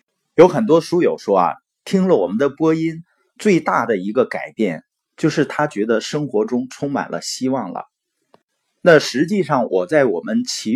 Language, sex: Chinese, male